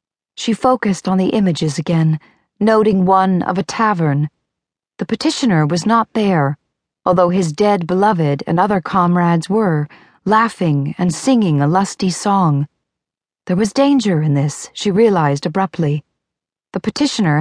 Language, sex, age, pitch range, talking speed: English, female, 40-59, 160-205 Hz, 140 wpm